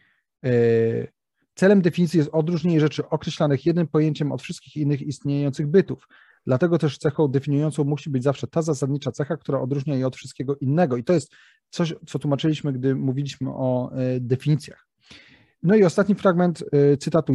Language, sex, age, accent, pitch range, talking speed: Polish, male, 30-49, native, 140-175 Hz, 150 wpm